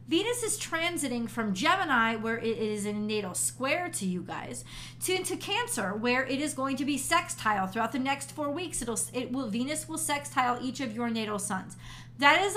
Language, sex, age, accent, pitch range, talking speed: English, female, 40-59, American, 215-275 Hz, 190 wpm